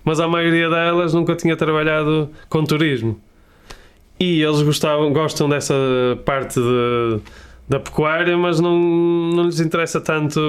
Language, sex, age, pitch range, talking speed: Portuguese, male, 20-39, 130-160 Hz, 125 wpm